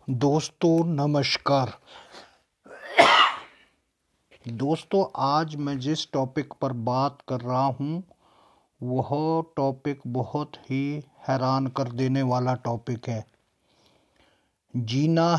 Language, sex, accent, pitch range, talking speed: Hindi, male, native, 130-155 Hz, 90 wpm